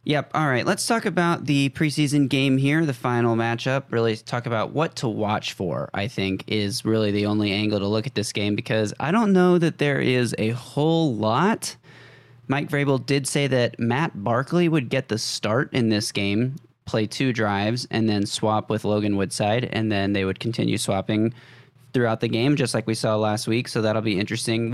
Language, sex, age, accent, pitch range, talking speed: English, male, 20-39, American, 110-135 Hz, 205 wpm